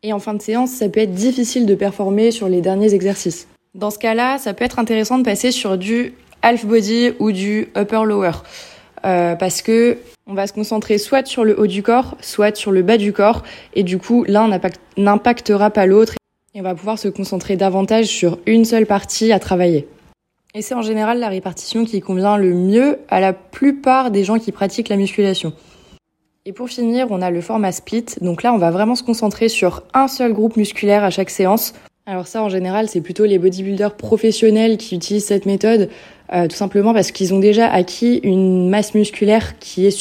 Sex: female